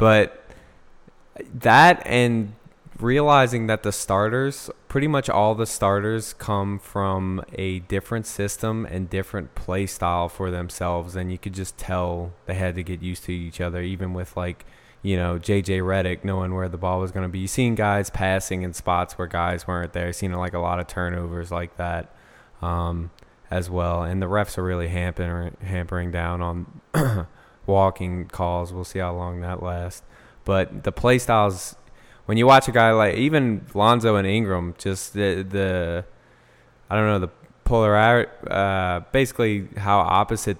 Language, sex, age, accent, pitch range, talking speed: English, male, 20-39, American, 90-105 Hz, 175 wpm